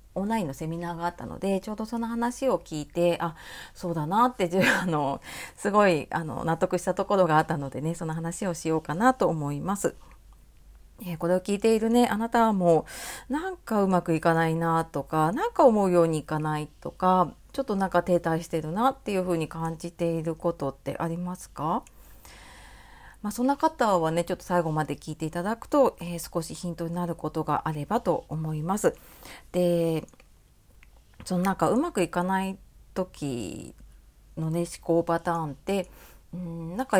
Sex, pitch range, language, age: female, 160-225 Hz, Japanese, 40-59